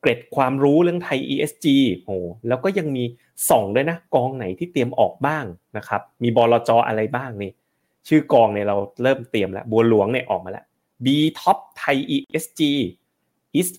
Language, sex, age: Thai, male, 30-49